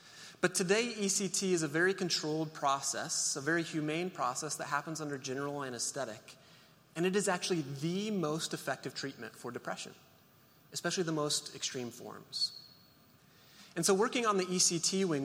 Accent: American